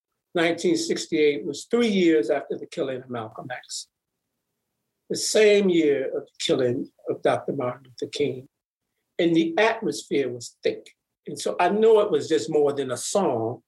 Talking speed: 160 wpm